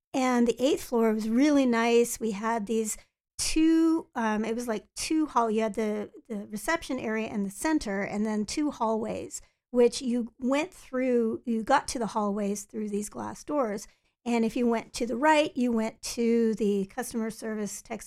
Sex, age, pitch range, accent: female, 50-69, 215-255 Hz, American